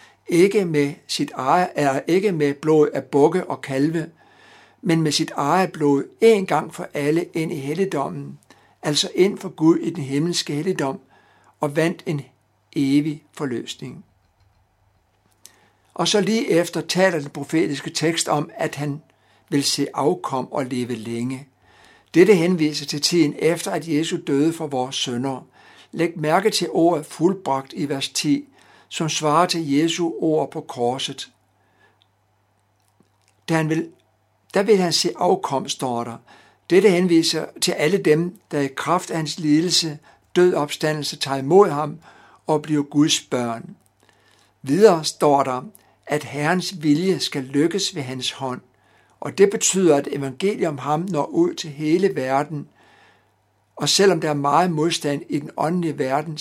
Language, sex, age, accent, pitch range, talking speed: Danish, male, 60-79, native, 135-170 Hz, 150 wpm